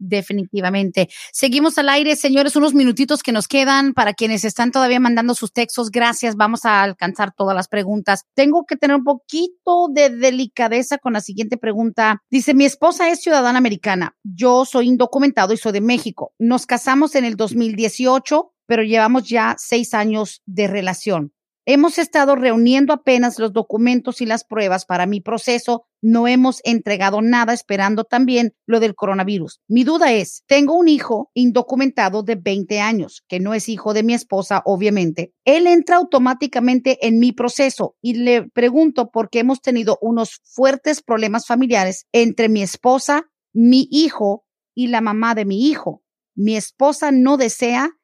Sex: female